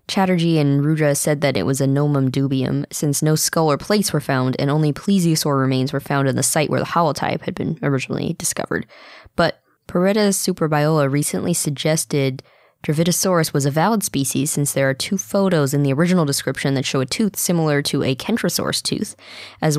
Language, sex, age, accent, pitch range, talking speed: English, female, 20-39, American, 140-170 Hz, 190 wpm